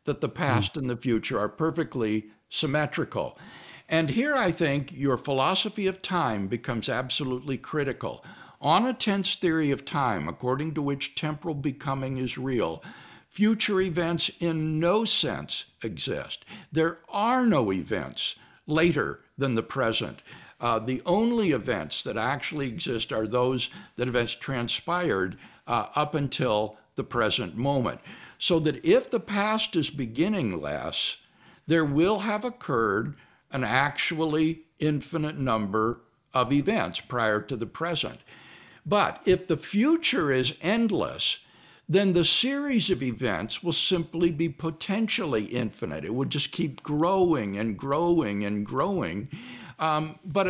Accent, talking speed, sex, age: American, 135 wpm, male, 50-69